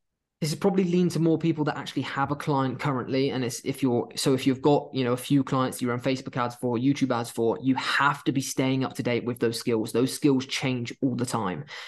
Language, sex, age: English, male, 20-39